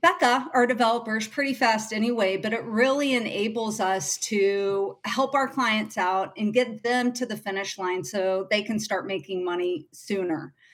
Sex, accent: female, American